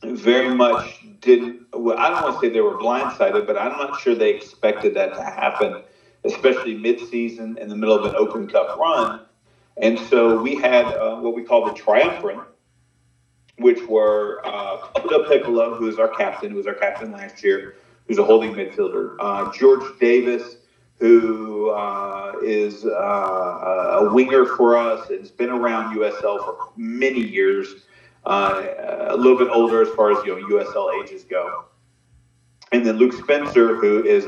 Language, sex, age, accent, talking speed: English, male, 40-59, American, 170 wpm